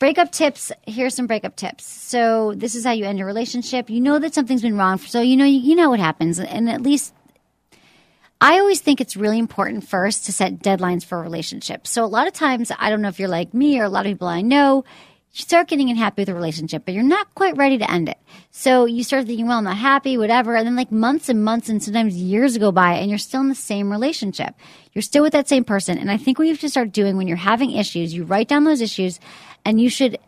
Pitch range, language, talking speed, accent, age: 205-275 Hz, English, 260 wpm, American, 40-59